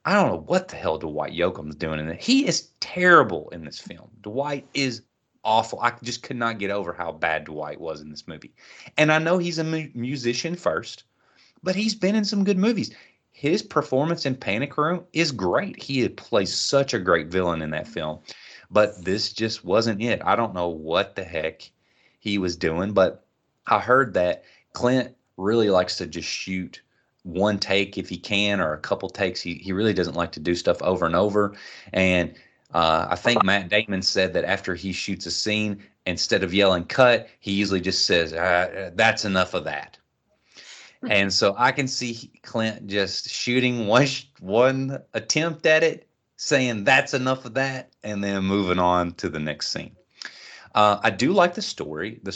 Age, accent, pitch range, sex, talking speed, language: 30-49, American, 90-130 Hz, male, 195 wpm, English